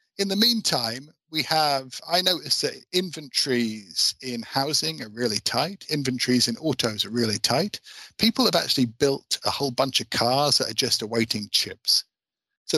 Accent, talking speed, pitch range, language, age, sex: British, 165 wpm, 120-150 Hz, English, 50-69, male